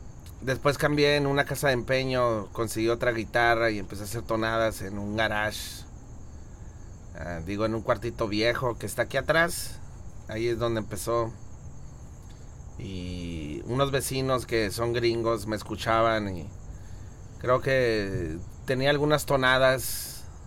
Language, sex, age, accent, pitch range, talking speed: English, male, 30-49, Mexican, 100-120 Hz, 135 wpm